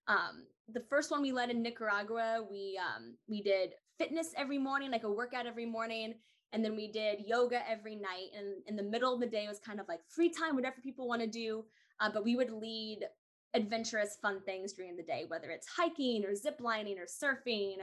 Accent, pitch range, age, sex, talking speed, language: American, 205-270 Hz, 10-29, female, 210 wpm, English